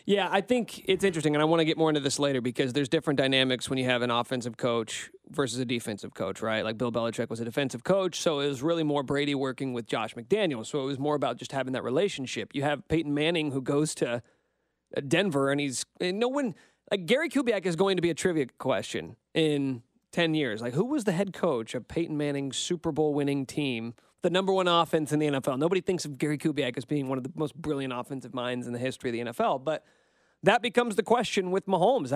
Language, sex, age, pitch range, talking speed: English, male, 30-49, 130-180 Hz, 240 wpm